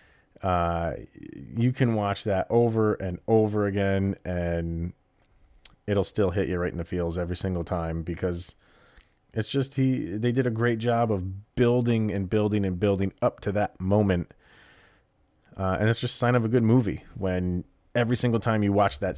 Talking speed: 180 wpm